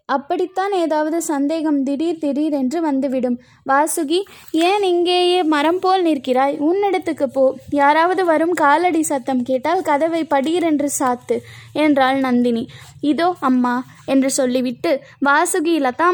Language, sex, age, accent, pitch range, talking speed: Tamil, female, 20-39, native, 270-330 Hz, 110 wpm